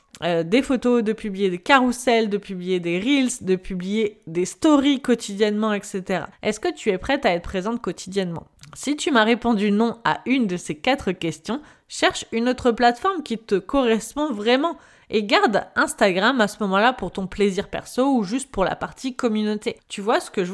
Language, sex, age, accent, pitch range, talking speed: French, female, 20-39, French, 180-240 Hz, 195 wpm